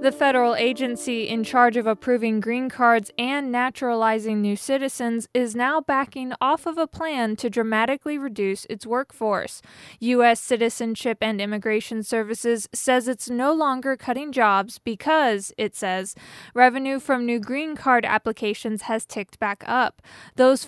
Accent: American